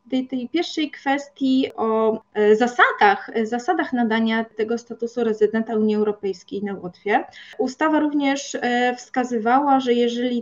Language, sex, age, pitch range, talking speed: Polish, female, 30-49, 215-260 Hz, 115 wpm